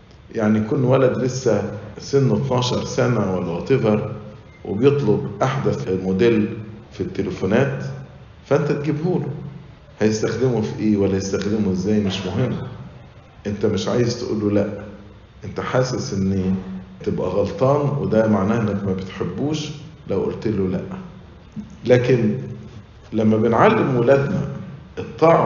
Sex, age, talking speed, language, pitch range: male, 50-69, 110 wpm, English, 105-140 Hz